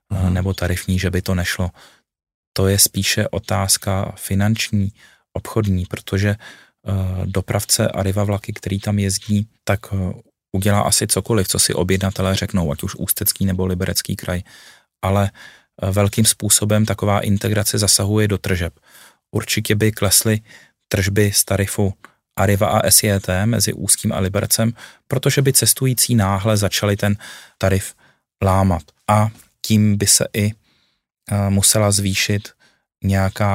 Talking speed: 125 wpm